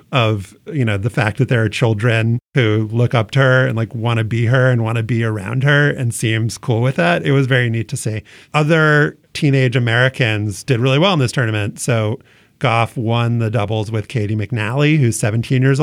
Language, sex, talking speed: English, male, 215 wpm